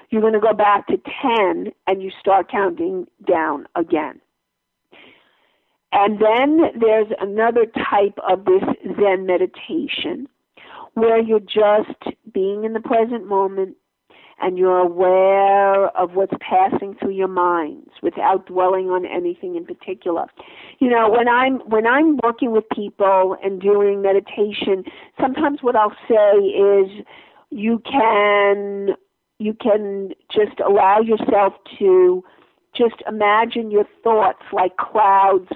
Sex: female